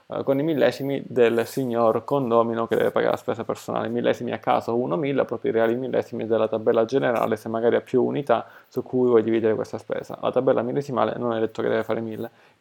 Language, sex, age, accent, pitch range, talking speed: Italian, male, 20-39, native, 115-145 Hz, 210 wpm